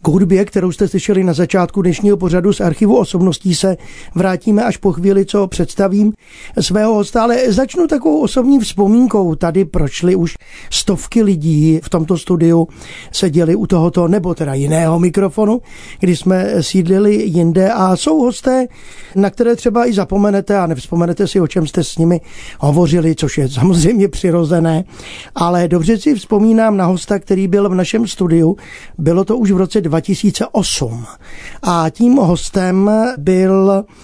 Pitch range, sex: 170-205 Hz, male